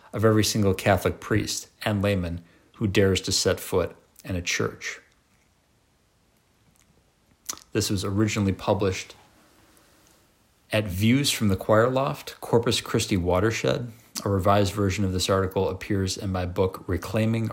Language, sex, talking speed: English, male, 135 wpm